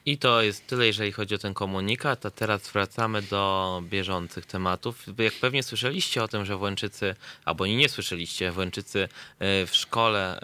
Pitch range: 95-115 Hz